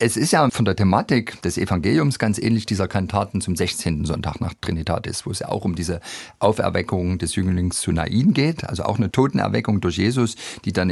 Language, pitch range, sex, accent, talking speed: German, 90-110 Hz, male, German, 205 wpm